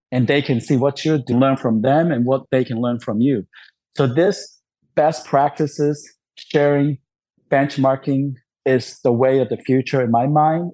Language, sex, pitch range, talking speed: English, male, 125-145 Hz, 175 wpm